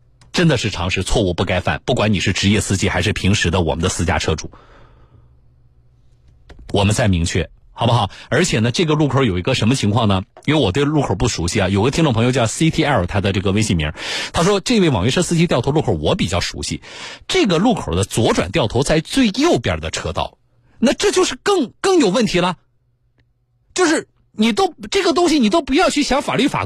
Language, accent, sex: Chinese, native, male